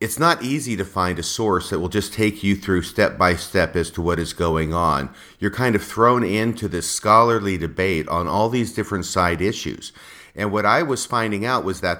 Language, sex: English, male